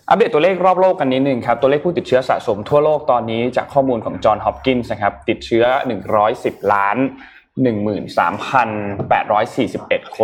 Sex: male